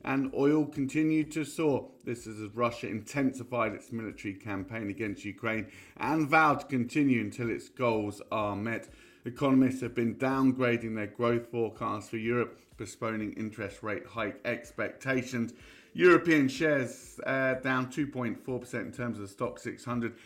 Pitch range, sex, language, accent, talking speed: 110-130 Hz, male, English, British, 145 wpm